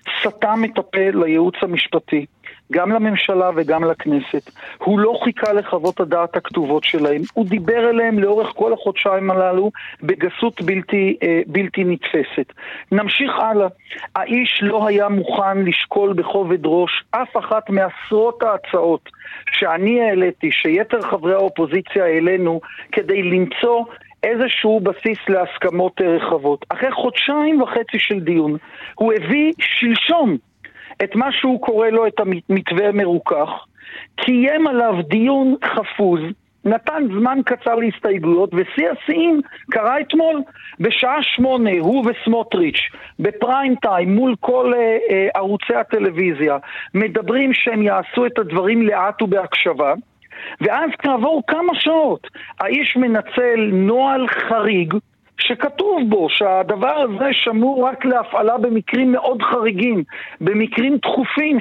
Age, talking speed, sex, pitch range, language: 40-59, 115 wpm, male, 195-255 Hz, Hebrew